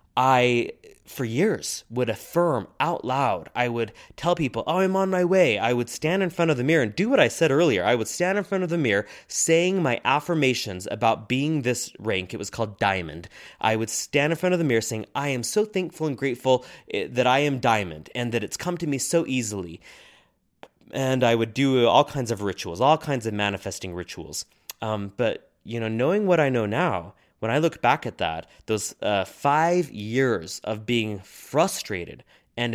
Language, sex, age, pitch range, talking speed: English, male, 20-39, 110-155 Hz, 205 wpm